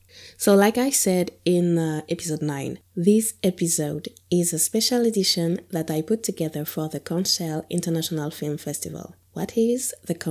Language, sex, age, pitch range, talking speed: English, female, 20-39, 160-195 Hz, 155 wpm